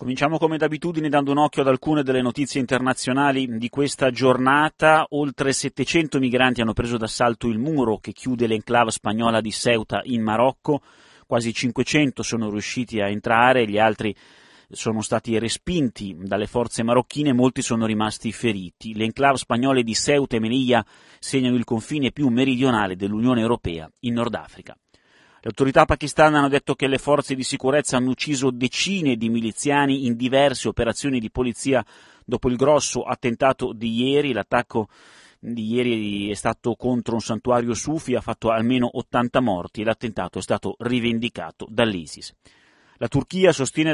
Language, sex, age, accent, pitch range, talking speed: Italian, male, 30-49, native, 115-135 Hz, 155 wpm